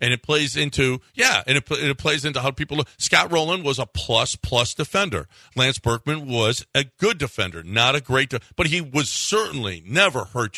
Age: 50-69